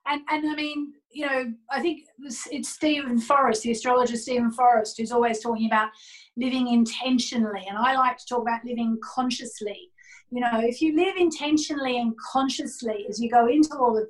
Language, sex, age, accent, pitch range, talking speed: English, female, 30-49, Australian, 225-290 Hz, 185 wpm